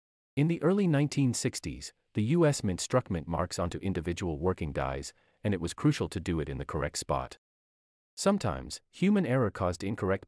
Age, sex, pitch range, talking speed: 30-49, male, 80-130 Hz, 175 wpm